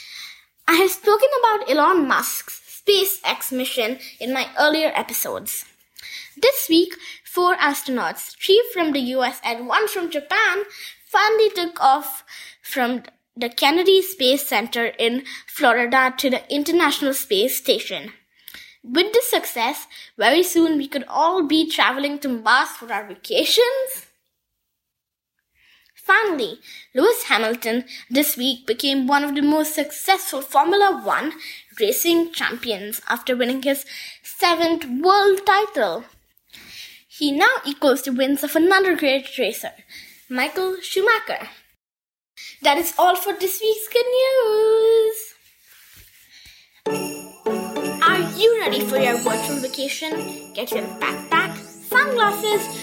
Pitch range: 270-400 Hz